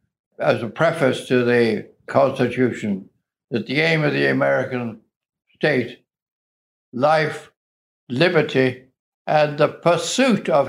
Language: English